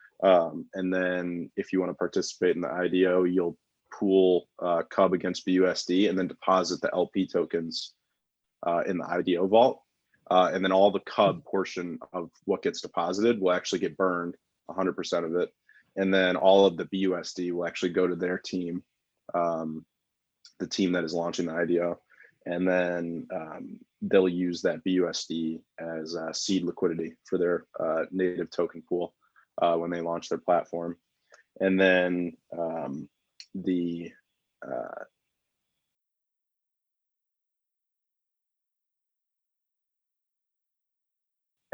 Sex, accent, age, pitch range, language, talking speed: male, American, 20-39, 85-95 Hz, English, 135 wpm